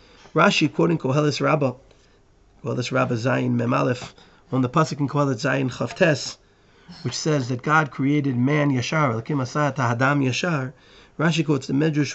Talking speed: 145 wpm